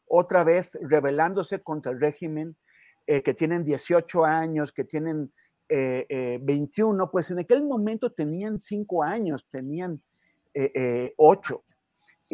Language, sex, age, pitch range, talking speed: Spanish, male, 40-59, 145-180 Hz, 125 wpm